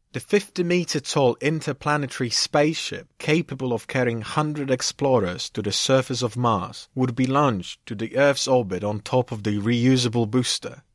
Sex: male